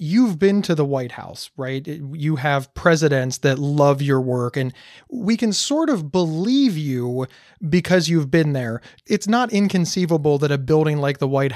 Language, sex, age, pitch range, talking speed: English, male, 30-49, 140-190 Hz, 175 wpm